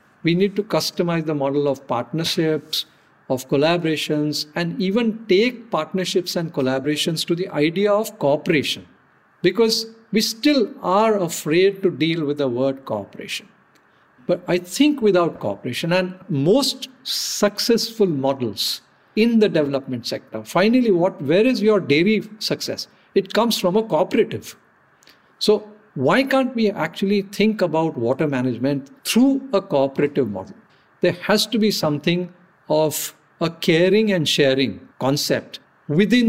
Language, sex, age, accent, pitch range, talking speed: English, male, 50-69, Indian, 150-210 Hz, 135 wpm